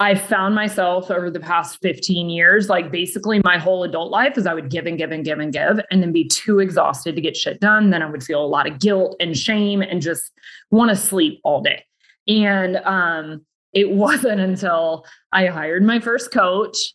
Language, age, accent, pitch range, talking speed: English, 20-39, American, 175-215 Hz, 210 wpm